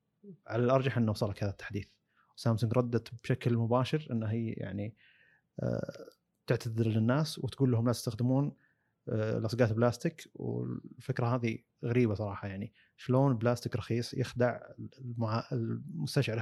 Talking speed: 115 wpm